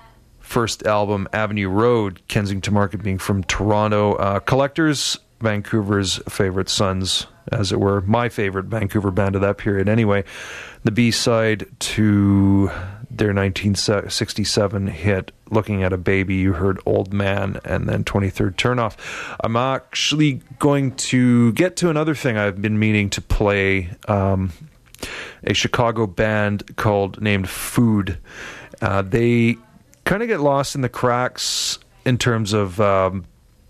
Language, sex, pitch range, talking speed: English, male, 100-115 Hz, 135 wpm